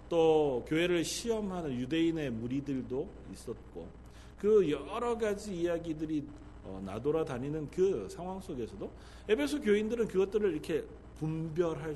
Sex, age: male, 40-59